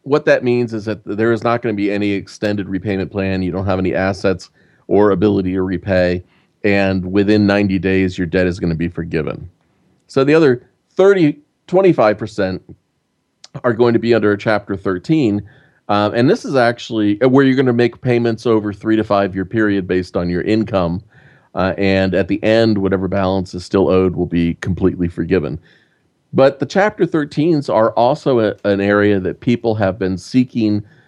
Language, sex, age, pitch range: English, male, 40-59, 95-120 Hz